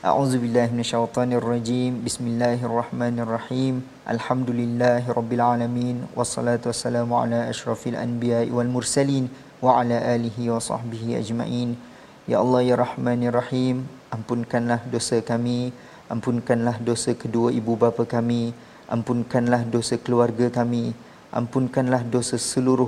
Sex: male